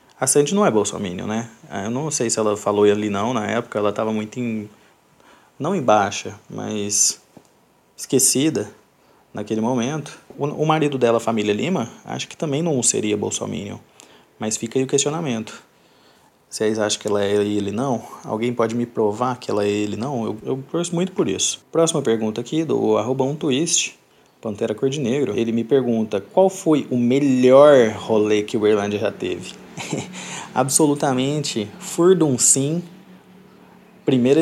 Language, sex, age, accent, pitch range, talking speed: Portuguese, male, 20-39, Brazilian, 110-145 Hz, 165 wpm